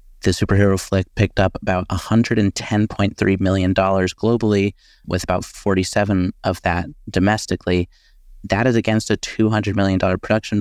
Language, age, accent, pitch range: English, 30-49, American, 95-115 Hz